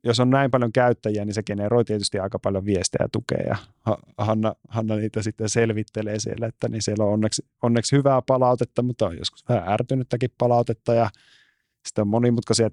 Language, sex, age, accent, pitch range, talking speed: Finnish, male, 30-49, native, 105-120 Hz, 185 wpm